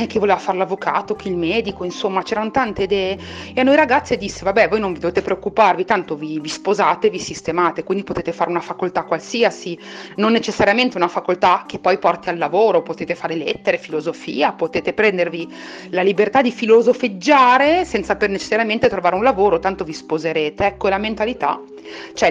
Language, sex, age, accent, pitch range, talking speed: Italian, female, 40-59, native, 175-240 Hz, 175 wpm